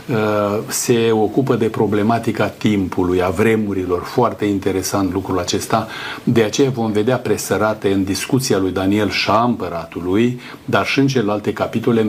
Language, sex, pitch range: Romanian, male, 105-125 Hz